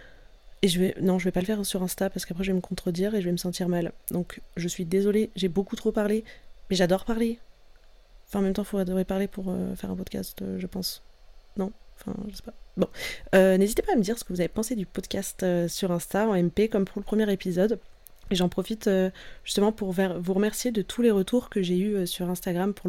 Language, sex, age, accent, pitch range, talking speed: French, female, 20-39, French, 180-210 Hz, 255 wpm